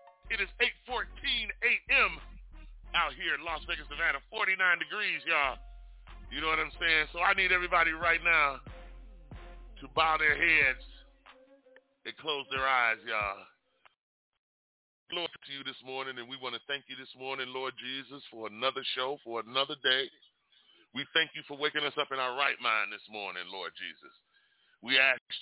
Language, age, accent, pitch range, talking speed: English, 40-59, American, 135-180 Hz, 170 wpm